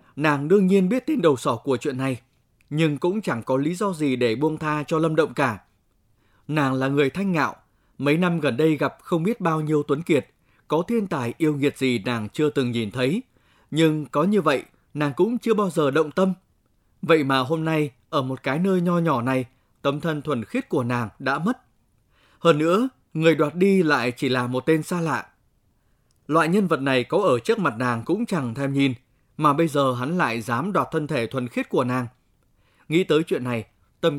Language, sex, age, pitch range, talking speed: Vietnamese, male, 20-39, 130-175 Hz, 220 wpm